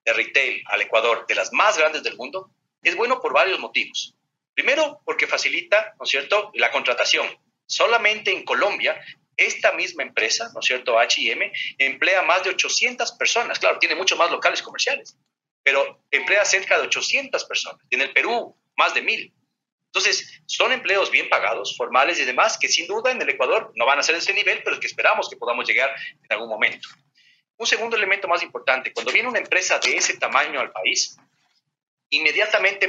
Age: 40-59